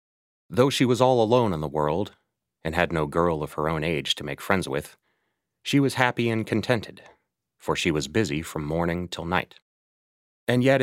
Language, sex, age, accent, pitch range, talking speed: English, male, 30-49, American, 75-110 Hz, 195 wpm